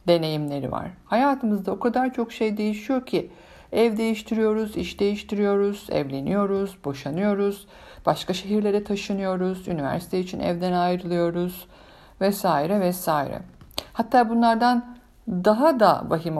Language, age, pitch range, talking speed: English, 60-79, 170-205 Hz, 105 wpm